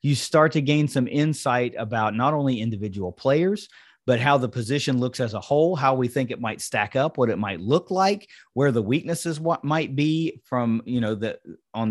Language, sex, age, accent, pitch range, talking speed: English, male, 30-49, American, 115-150 Hz, 205 wpm